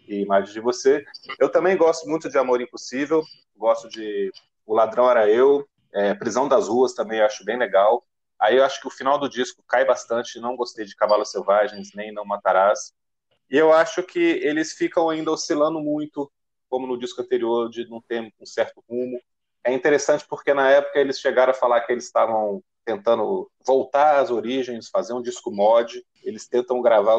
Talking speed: 190 wpm